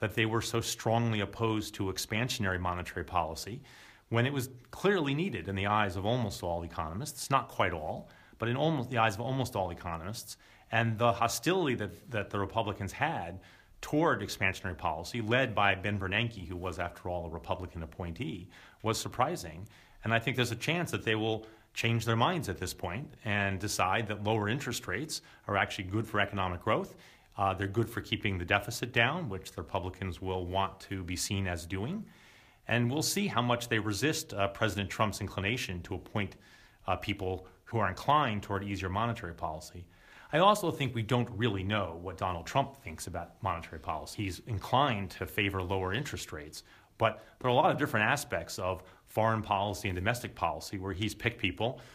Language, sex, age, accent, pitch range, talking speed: English, male, 40-59, American, 95-115 Hz, 190 wpm